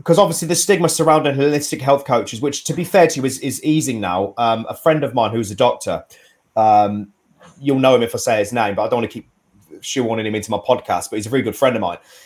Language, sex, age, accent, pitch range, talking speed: English, male, 30-49, British, 110-140 Hz, 265 wpm